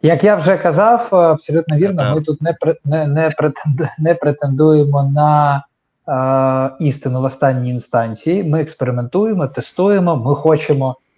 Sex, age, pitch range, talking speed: male, 20-39, 130-155 Hz, 125 wpm